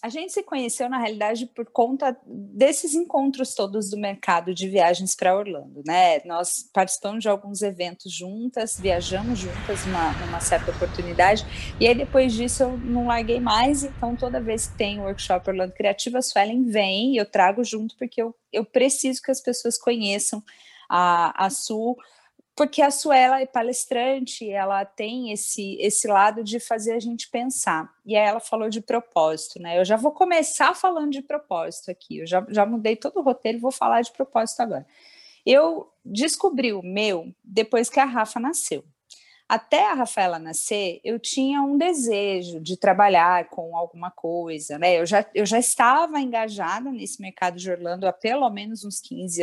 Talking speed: 175 wpm